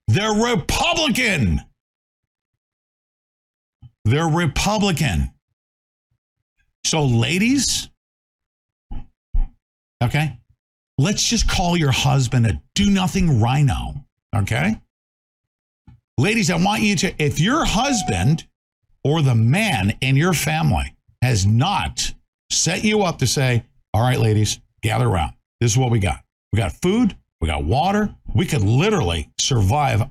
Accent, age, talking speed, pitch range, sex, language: American, 50-69, 115 wpm, 105-150 Hz, male, English